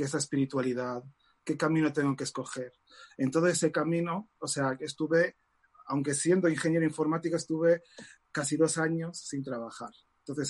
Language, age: Spanish, 30-49